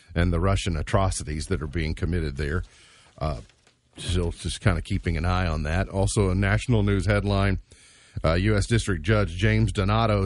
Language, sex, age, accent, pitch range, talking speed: English, male, 40-59, American, 90-115 Hz, 175 wpm